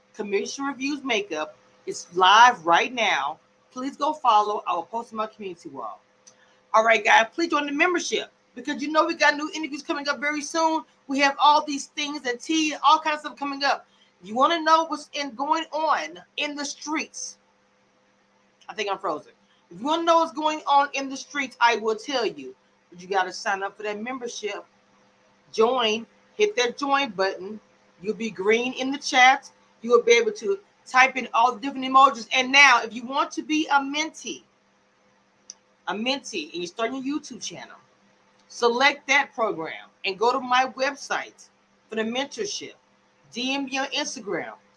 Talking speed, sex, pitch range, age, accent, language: 190 wpm, female, 230-300 Hz, 40-59, American, English